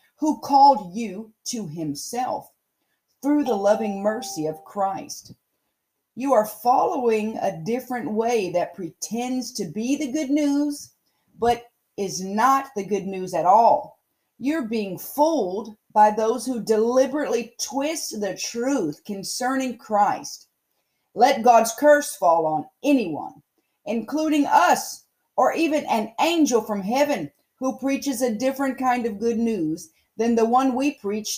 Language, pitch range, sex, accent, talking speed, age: English, 220-290 Hz, female, American, 135 wpm, 40-59